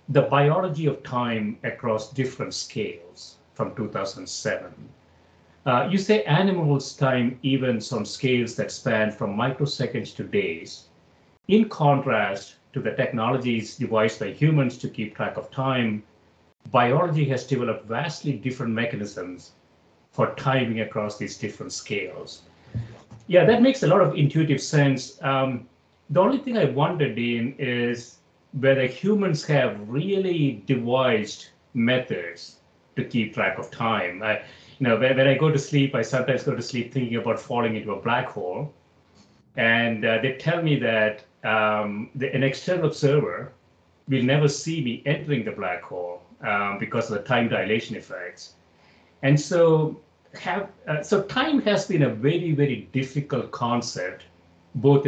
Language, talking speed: English, 150 wpm